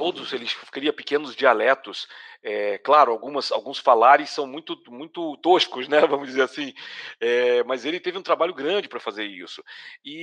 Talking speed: 145 wpm